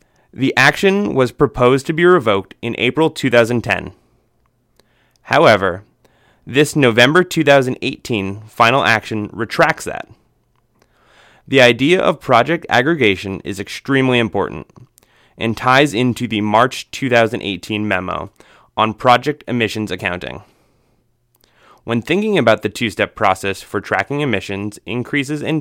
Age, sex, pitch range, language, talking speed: 20-39, male, 105-135 Hz, English, 110 wpm